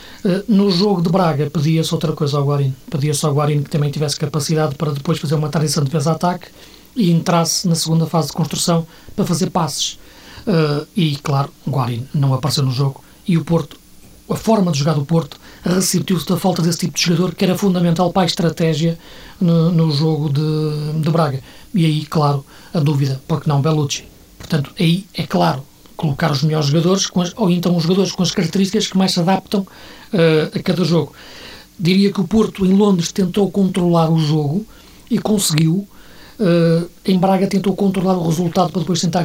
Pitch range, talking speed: 155-180 Hz, 190 wpm